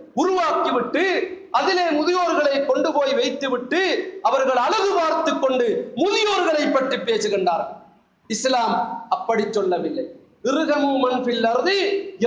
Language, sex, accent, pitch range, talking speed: Tamil, male, native, 230-335 Hz, 80 wpm